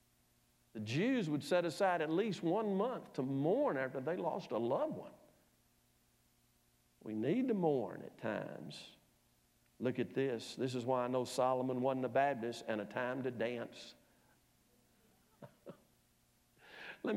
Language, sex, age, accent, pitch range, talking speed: English, male, 60-79, American, 125-165 Hz, 145 wpm